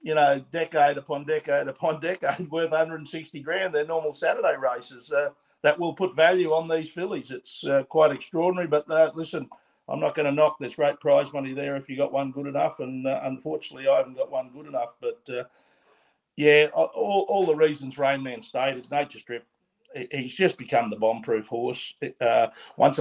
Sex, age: male, 50-69